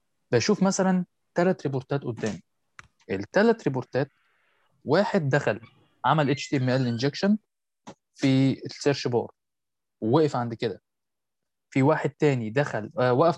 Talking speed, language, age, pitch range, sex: 105 wpm, Arabic, 20-39, 120-155 Hz, male